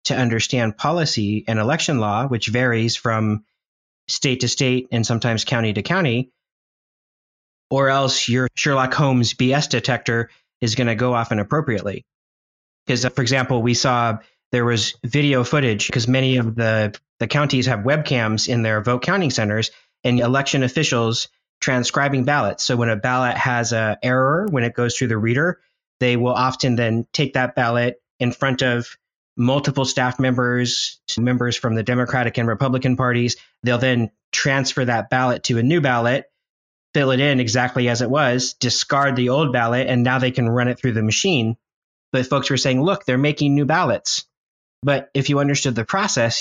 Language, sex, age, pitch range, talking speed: English, male, 30-49, 115-135 Hz, 175 wpm